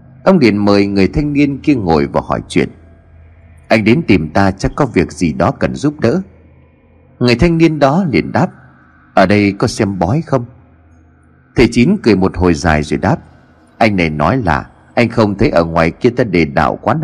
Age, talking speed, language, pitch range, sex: 30-49, 200 wpm, Vietnamese, 85-135 Hz, male